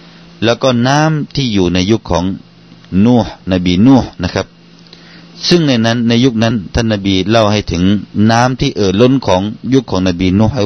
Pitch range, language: 90-120 Hz, Thai